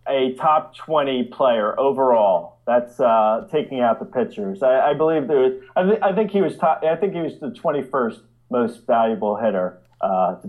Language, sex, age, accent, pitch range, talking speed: English, male, 30-49, American, 120-185 Hz, 190 wpm